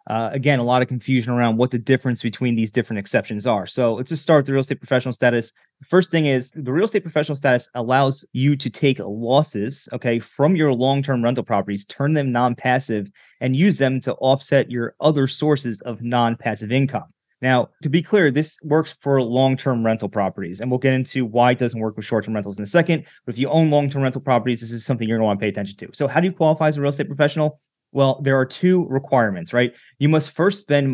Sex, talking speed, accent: male, 235 wpm, American